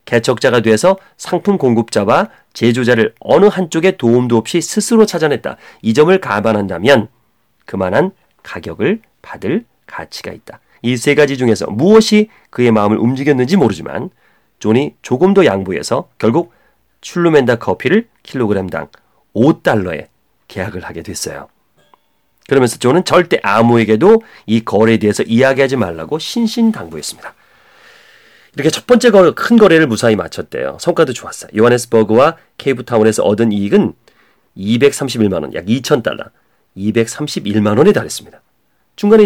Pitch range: 110-180 Hz